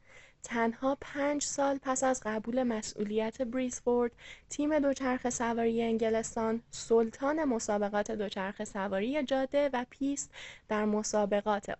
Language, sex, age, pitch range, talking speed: Persian, female, 10-29, 215-280 Hz, 105 wpm